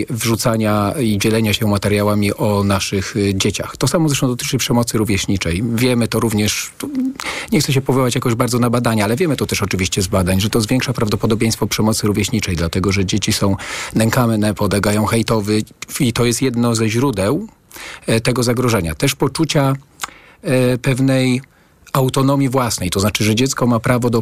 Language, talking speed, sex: Polish, 160 wpm, male